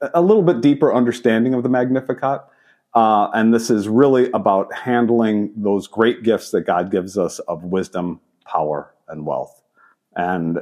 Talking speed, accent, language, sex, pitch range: 160 wpm, American, English, male, 95-120 Hz